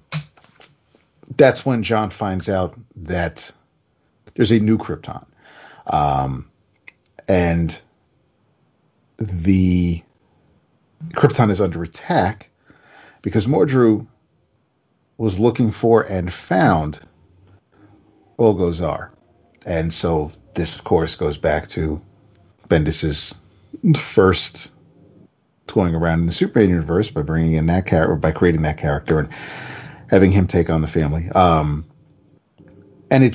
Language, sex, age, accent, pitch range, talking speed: English, male, 50-69, American, 80-115 Hz, 110 wpm